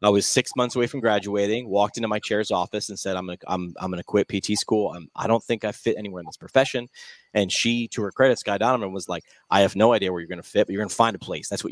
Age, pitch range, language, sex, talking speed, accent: 30-49, 95-120 Hz, English, male, 290 wpm, American